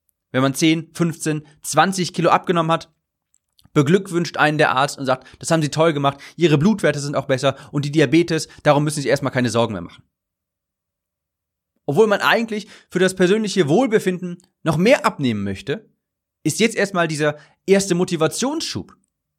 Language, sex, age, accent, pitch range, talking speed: German, male, 30-49, German, 110-180 Hz, 160 wpm